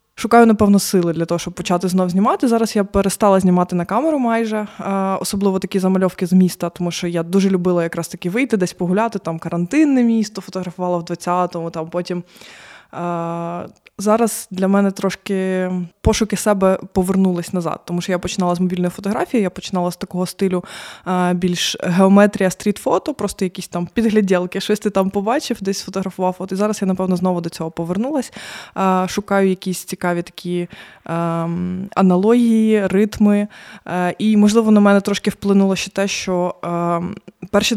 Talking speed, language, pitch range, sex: 155 wpm, Ukrainian, 175-205 Hz, female